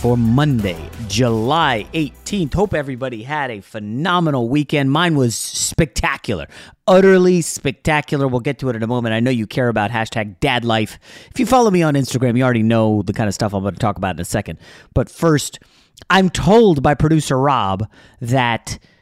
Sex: male